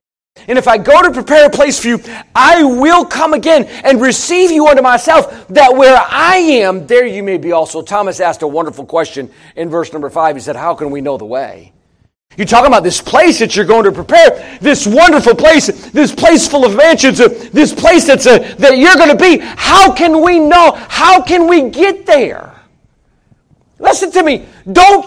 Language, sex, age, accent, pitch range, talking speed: English, male, 40-59, American, 225-325 Hz, 205 wpm